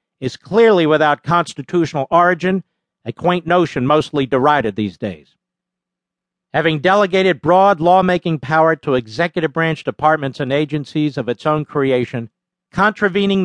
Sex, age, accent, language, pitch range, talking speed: male, 50-69, American, English, 150-190 Hz, 125 wpm